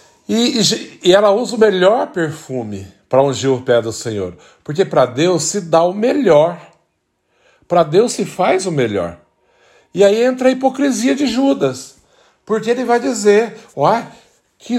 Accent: Brazilian